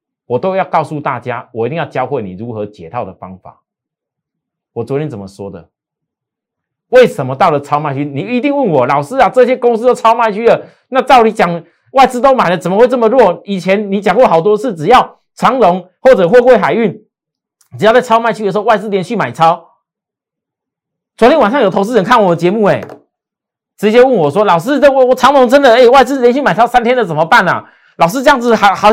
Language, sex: Chinese, male